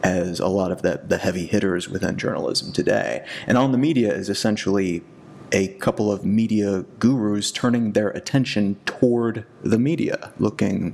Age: 30-49